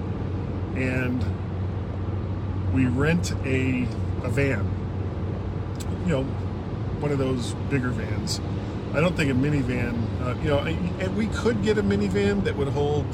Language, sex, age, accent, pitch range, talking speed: English, male, 40-59, American, 95-130 Hz, 135 wpm